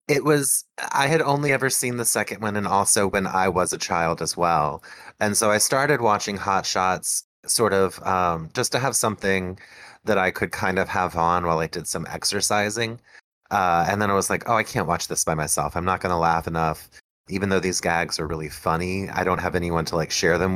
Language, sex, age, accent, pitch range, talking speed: English, male, 30-49, American, 90-110 Hz, 230 wpm